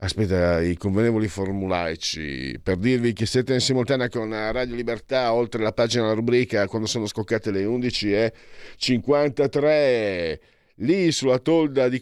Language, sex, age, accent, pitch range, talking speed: Italian, male, 50-69, native, 95-130 Hz, 140 wpm